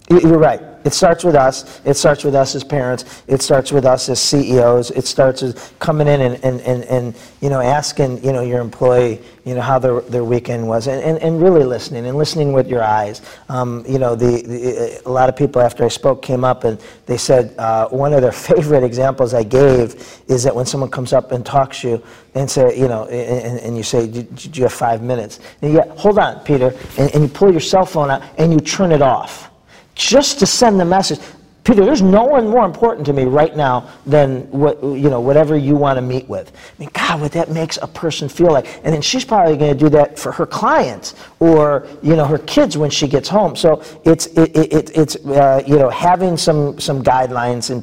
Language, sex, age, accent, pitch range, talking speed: English, male, 40-59, American, 125-155 Hz, 235 wpm